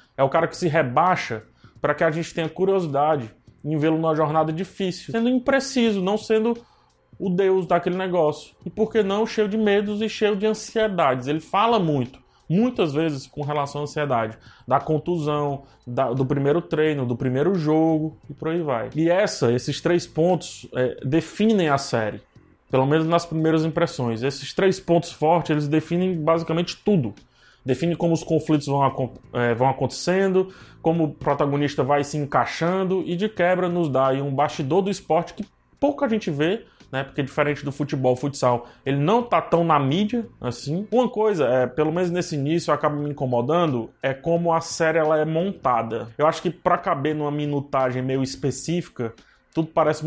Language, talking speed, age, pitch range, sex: Portuguese, 175 wpm, 20-39, 140-175 Hz, male